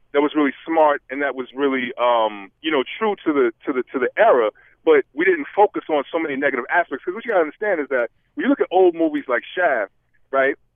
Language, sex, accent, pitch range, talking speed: English, male, American, 160-235 Hz, 250 wpm